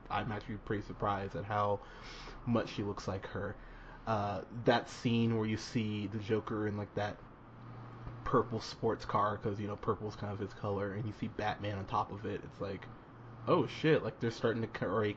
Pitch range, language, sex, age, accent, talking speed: 105-120 Hz, English, male, 20-39, American, 200 wpm